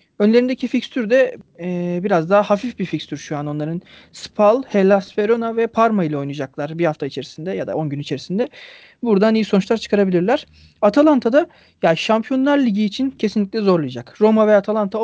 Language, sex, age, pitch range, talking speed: Turkish, male, 40-59, 185-235 Hz, 170 wpm